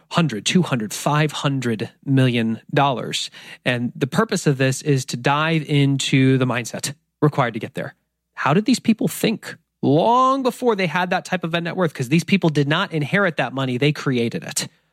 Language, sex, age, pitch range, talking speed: English, male, 30-49, 130-170 Hz, 180 wpm